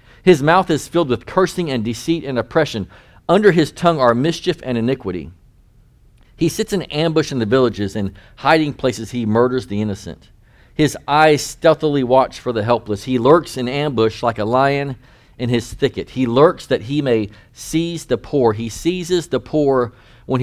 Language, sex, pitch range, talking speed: English, male, 115-150 Hz, 180 wpm